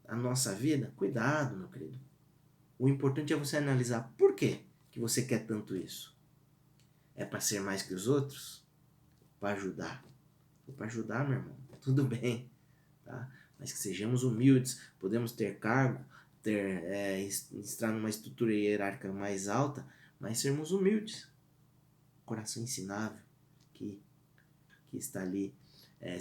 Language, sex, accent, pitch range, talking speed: Portuguese, male, Brazilian, 110-145 Hz, 135 wpm